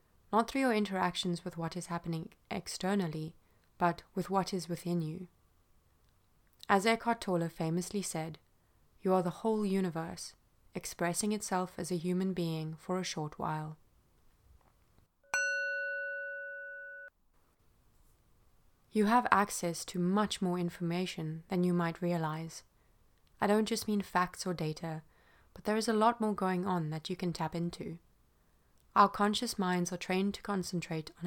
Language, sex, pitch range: English, female, 160-200 Hz